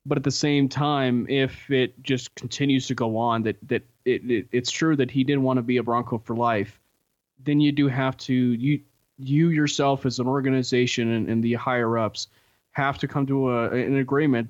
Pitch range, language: 120-140 Hz, English